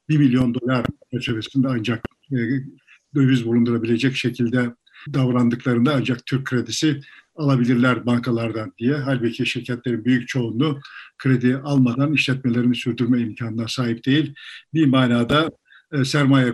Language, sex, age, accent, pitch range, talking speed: Turkish, male, 50-69, native, 125-150 Hz, 105 wpm